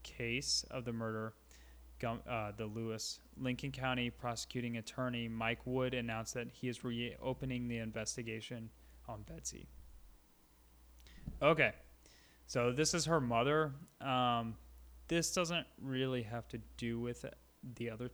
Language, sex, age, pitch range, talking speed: English, male, 20-39, 110-130 Hz, 125 wpm